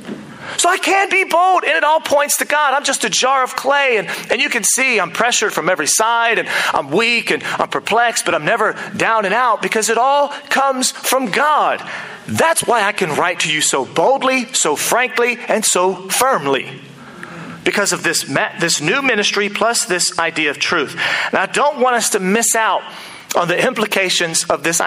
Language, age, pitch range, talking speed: English, 40-59, 165-240 Hz, 200 wpm